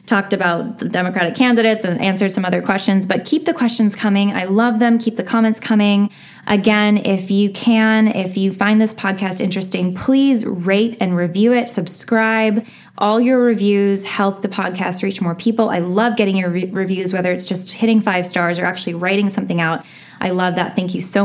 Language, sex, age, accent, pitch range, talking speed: English, female, 10-29, American, 180-210 Hz, 195 wpm